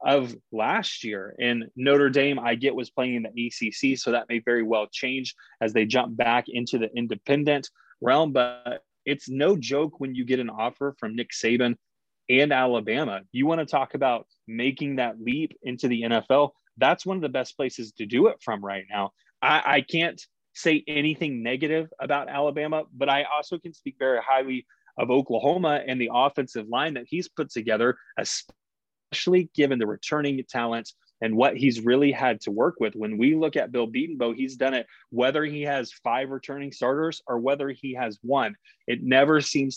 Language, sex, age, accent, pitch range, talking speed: English, male, 20-39, American, 120-145 Hz, 185 wpm